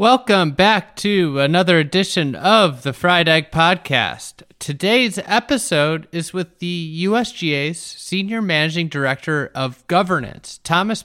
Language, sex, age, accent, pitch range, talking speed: English, male, 30-49, American, 135-170 Hz, 120 wpm